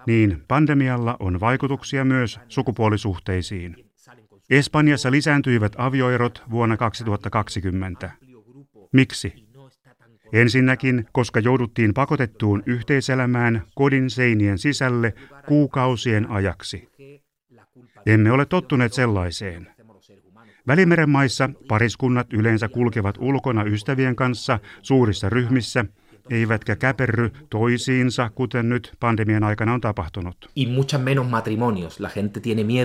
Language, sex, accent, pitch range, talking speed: Finnish, male, native, 105-130 Hz, 80 wpm